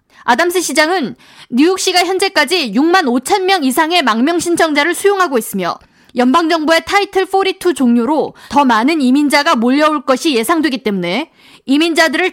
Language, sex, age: Korean, female, 20-39